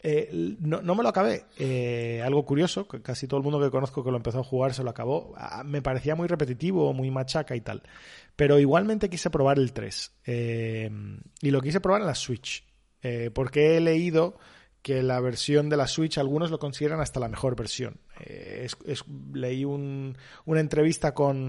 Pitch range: 125-150 Hz